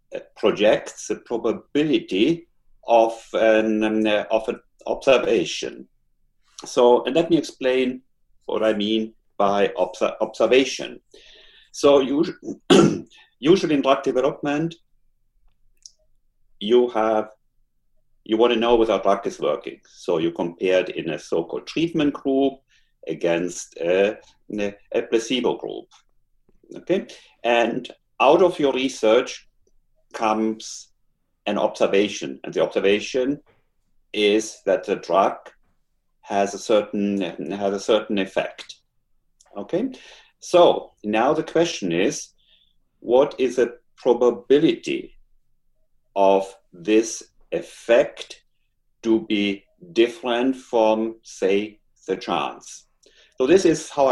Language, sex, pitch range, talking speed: English, male, 105-140 Hz, 105 wpm